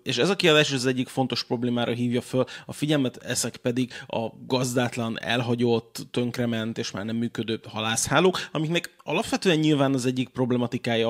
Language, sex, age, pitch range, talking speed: Hungarian, male, 30-49, 120-135 Hz, 155 wpm